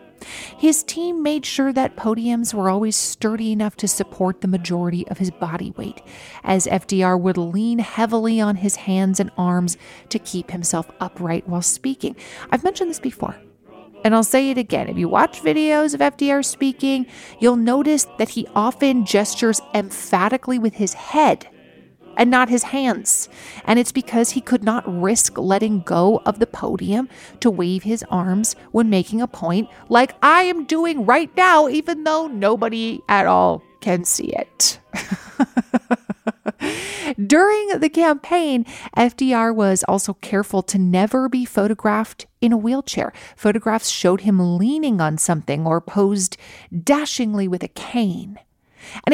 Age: 40-59